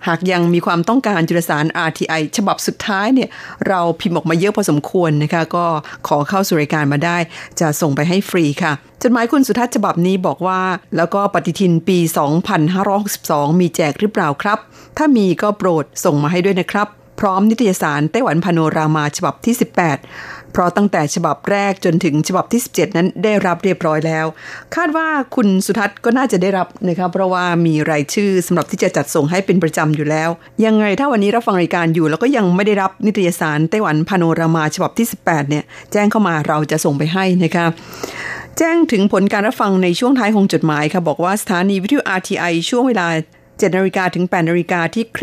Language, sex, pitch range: Thai, female, 160-205 Hz